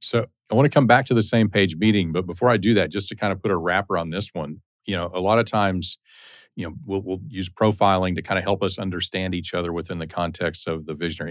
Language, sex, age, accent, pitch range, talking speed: English, male, 40-59, American, 85-105 Hz, 275 wpm